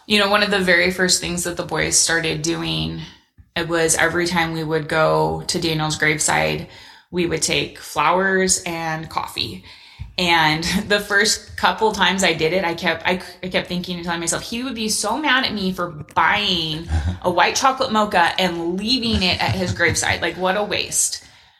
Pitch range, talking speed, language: 160-185 Hz, 190 wpm, English